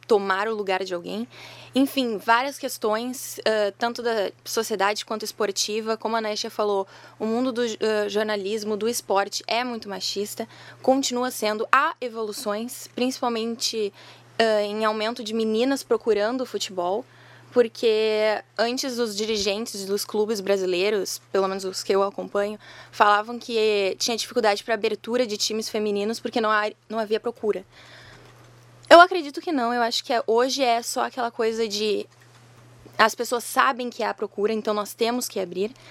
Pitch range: 210-240 Hz